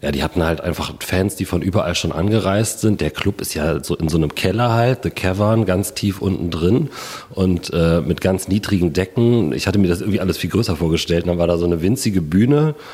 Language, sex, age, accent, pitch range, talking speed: German, male, 40-59, German, 85-100 Hz, 235 wpm